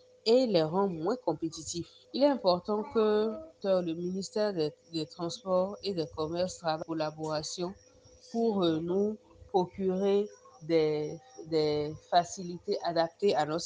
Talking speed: 125 wpm